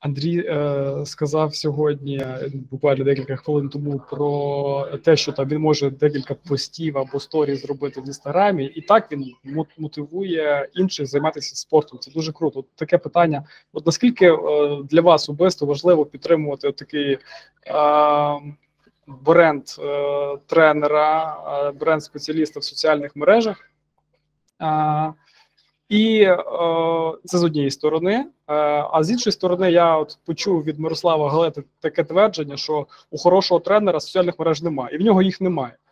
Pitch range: 145-170 Hz